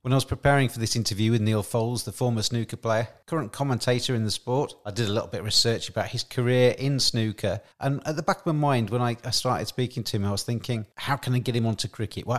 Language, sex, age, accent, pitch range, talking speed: English, male, 40-59, British, 110-135 Hz, 270 wpm